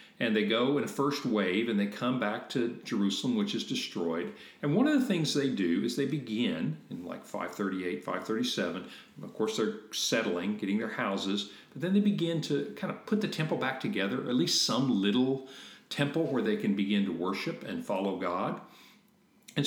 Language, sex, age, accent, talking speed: English, male, 50-69, American, 195 wpm